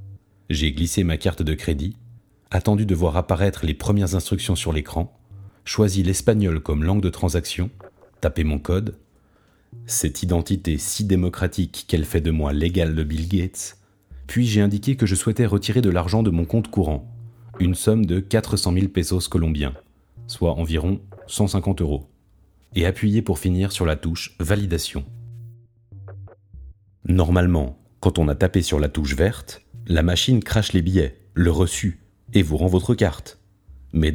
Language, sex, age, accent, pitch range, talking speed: French, male, 40-59, French, 85-105 Hz, 160 wpm